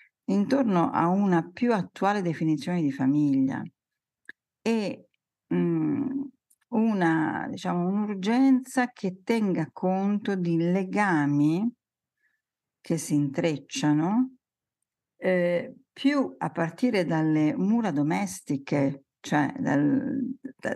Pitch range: 150-230 Hz